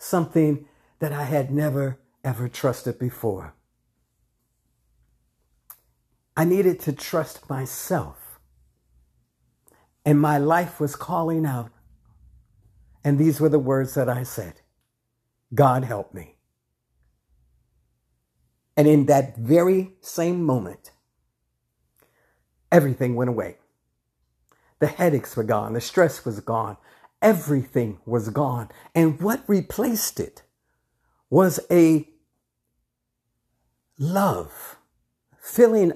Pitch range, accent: 105-165 Hz, American